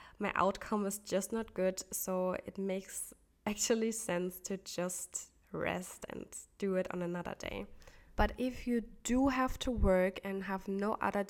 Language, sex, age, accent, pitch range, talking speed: English, female, 10-29, German, 185-215 Hz, 165 wpm